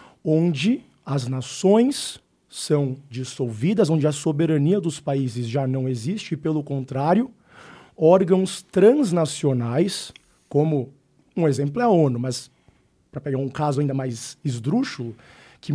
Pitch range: 135-180 Hz